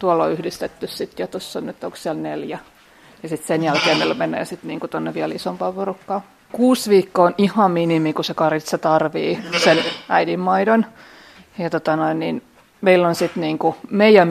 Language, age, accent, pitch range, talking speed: Finnish, 30-49, native, 160-185 Hz, 170 wpm